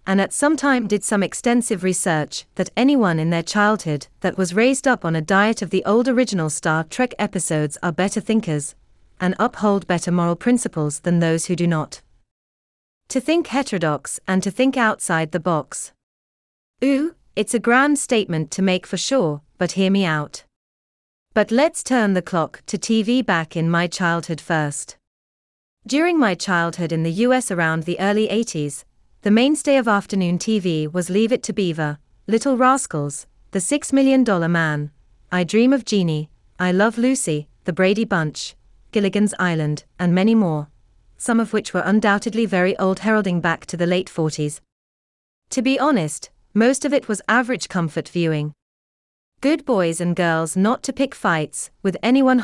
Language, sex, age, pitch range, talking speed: English, female, 30-49, 155-225 Hz, 170 wpm